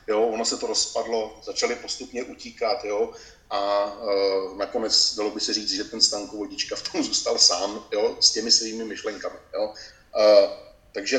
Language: Czech